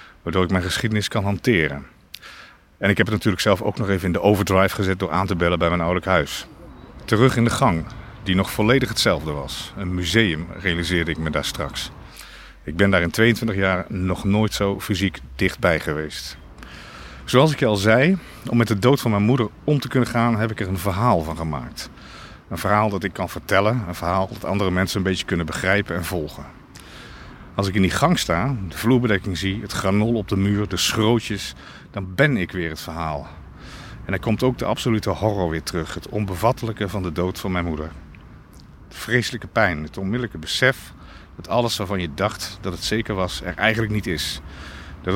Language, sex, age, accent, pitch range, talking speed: Dutch, male, 50-69, Dutch, 85-110 Hz, 205 wpm